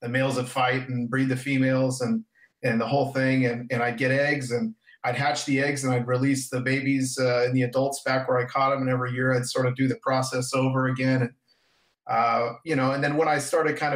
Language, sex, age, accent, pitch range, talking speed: English, male, 40-59, American, 125-135 Hz, 250 wpm